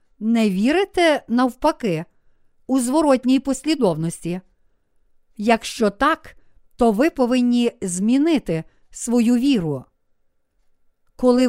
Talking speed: 80 wpm